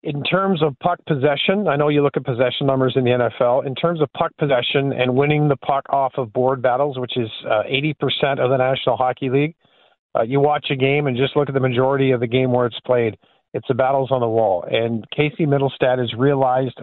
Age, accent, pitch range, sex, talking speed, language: 50-69, American, 125-150 Hz, male, 230 wpm, English